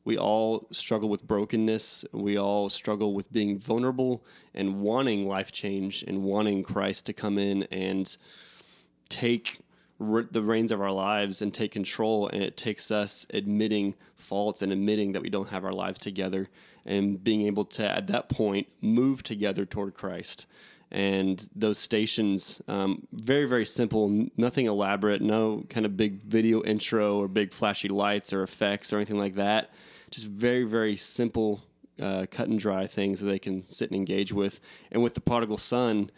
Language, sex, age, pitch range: English, male, 20-39, 100-110 Hz